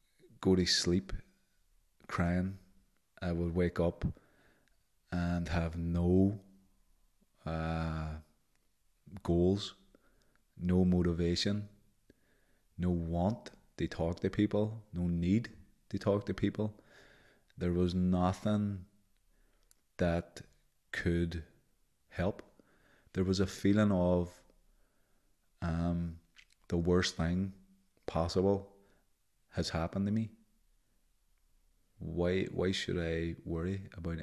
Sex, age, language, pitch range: male, 30-49, English, 85-95 Hz